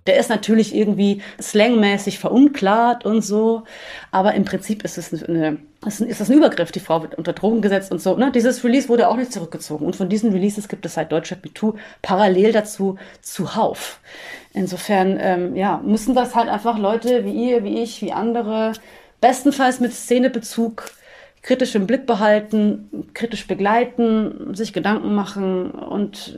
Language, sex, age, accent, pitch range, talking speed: German, female, 30-49, German, 185-230 Hz, 160 wpm